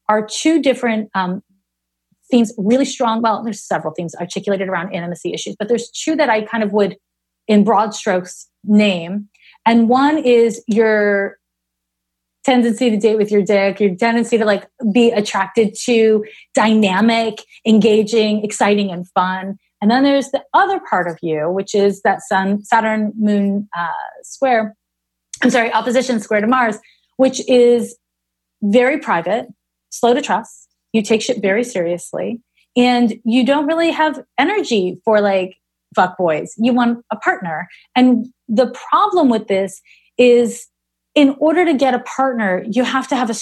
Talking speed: 160 wpm